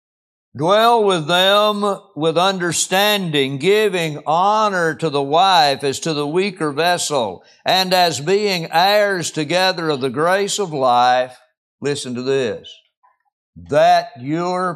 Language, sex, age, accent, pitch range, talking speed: English, male, 60-79, American, 150-205 Hz, 120 wpm